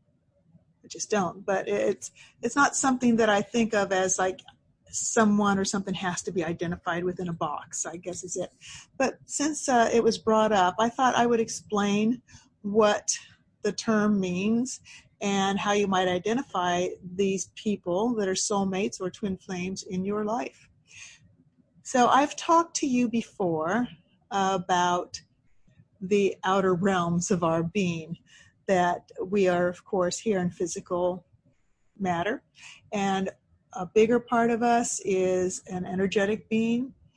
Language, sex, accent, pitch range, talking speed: English, female, American, 185-220 Hz, 145 wpm